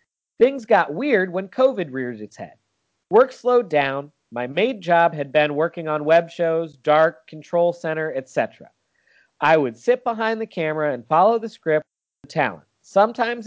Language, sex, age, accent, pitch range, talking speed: English, male, 40-59, American, 140-200 Hz, 165 wpm